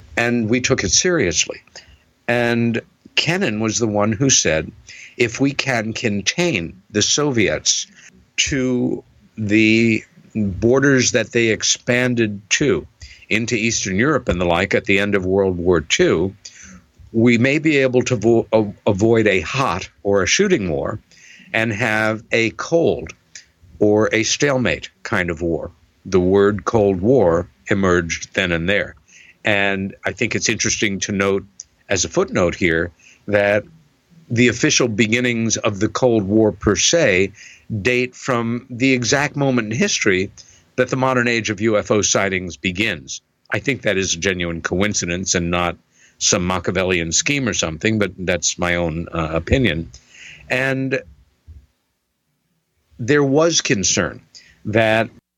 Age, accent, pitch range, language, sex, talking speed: 60-79, American, 95-120 Hz, English, male, 140 wpm